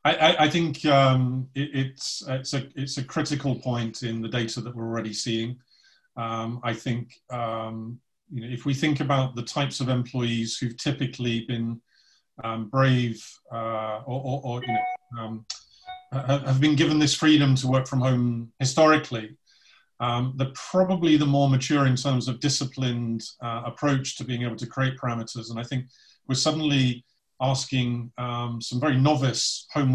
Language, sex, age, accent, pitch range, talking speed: English, male, 40-59, British, 120-140 Hz, 170 wpm